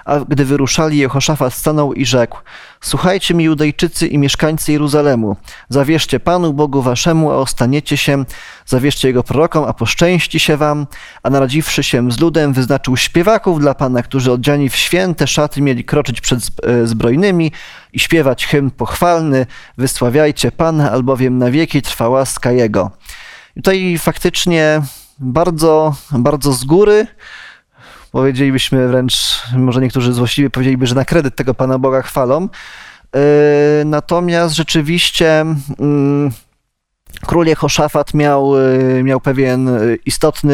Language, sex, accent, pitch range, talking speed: Polish, male, native, 130-155 Hz, 130 wpm